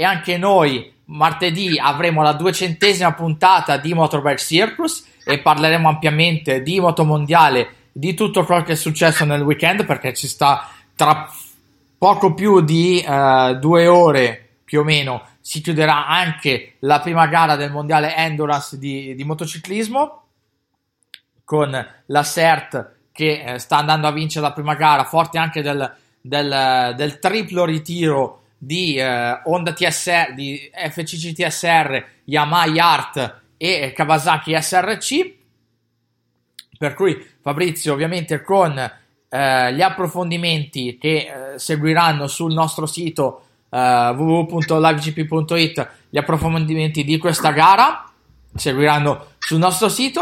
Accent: native